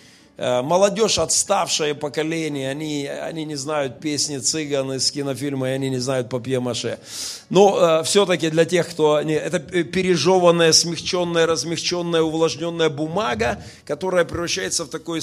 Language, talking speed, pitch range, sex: Russian, 130 wpm, 155-195 Hz, male